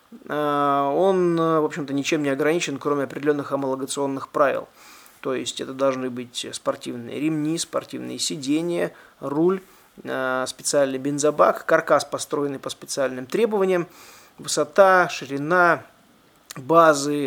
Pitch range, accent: 140-185 Hz, native